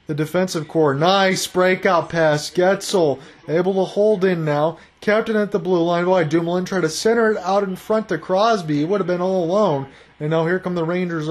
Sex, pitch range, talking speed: male, 155-190 Hz, 210 wpm